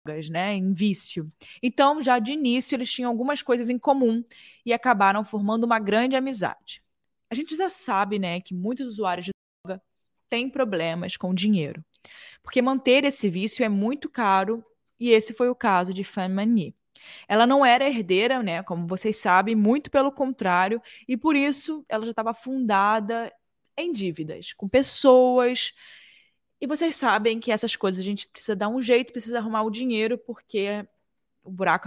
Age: 20-39